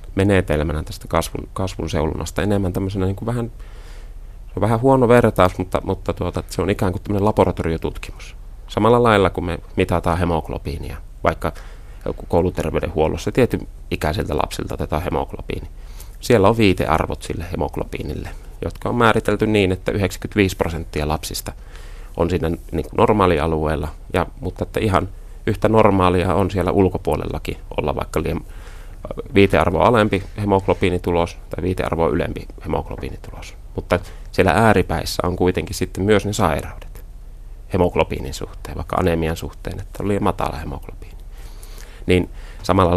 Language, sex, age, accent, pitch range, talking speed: Finnish, male, 30-49, native, 80-100 Hz, 125 wpm